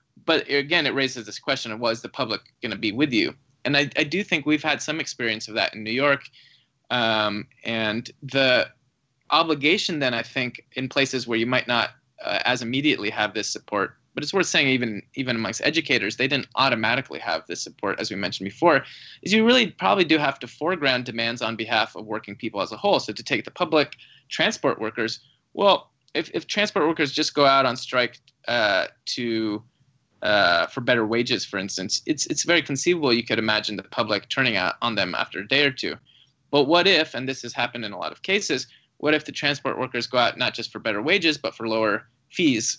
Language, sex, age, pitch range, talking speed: English, male, 20-39, 115-140 Hz, 215 wpm